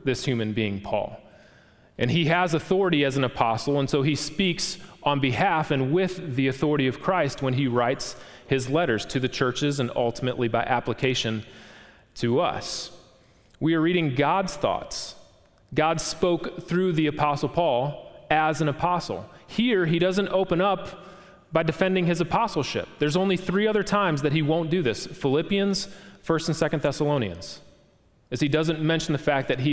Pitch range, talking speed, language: 115-165 Hz, 170 wpm, English